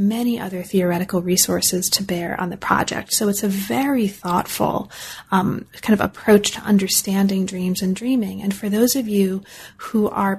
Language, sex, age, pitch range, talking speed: English, female, 30-49, 195-225 Hz, 175 wpm